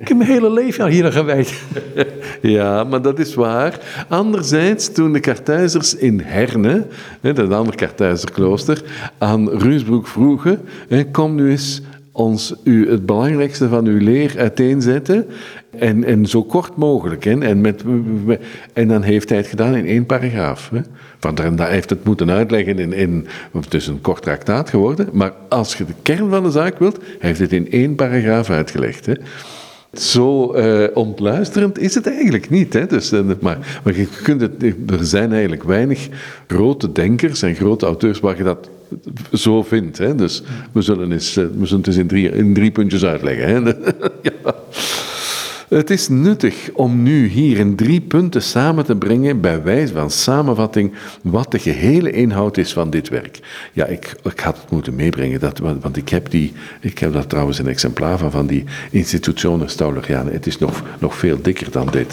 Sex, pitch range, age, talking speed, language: male, 100-150 Hz, 50-69, 170 wpm, Dutch